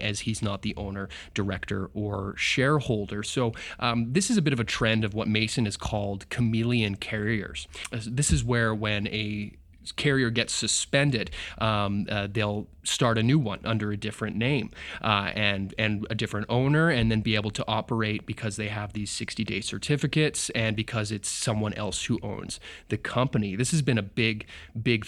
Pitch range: 105-115 Hz